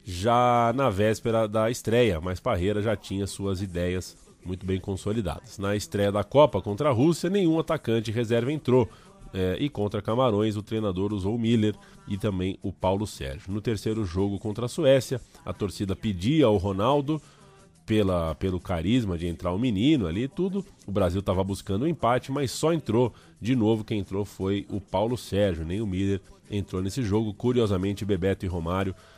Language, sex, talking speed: Portuguese, male, 175 wpm